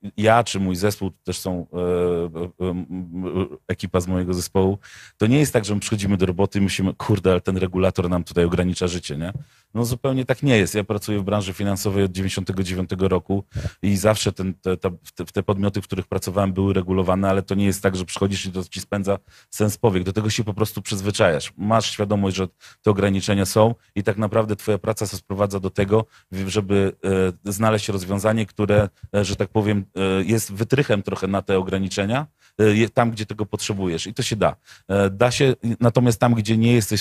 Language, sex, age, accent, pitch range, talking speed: Polish, male, 40-59, native, 95-110 Hz, 195 wpm